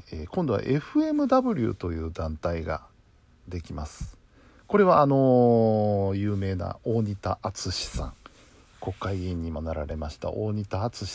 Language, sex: Japanese, male